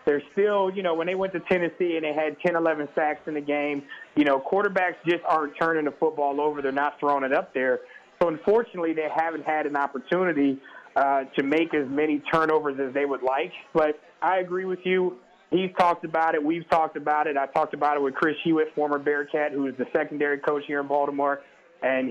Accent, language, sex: American, English, male